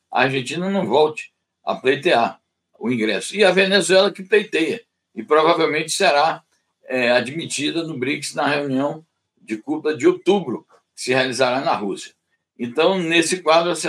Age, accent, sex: 60-79, Brazilian, male